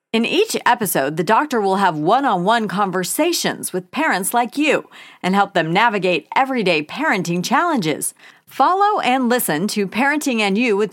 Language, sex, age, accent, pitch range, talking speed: English, female, 40-59, American, 180-265 Hz, 155 wpm